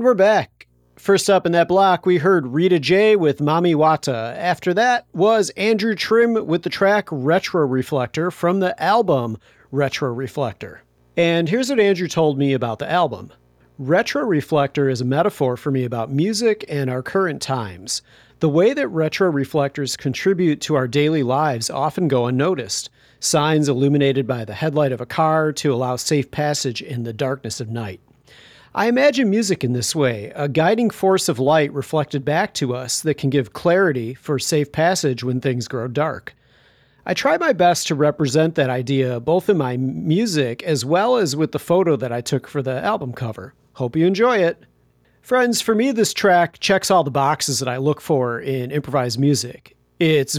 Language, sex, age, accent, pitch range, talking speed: English, male, 40-59, American, 130-175 Hz, 180 wpm